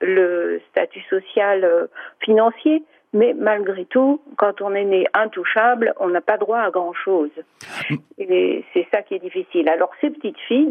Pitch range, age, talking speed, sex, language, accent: 195-270 Hz, 50-69, 170 wpm, female, French, French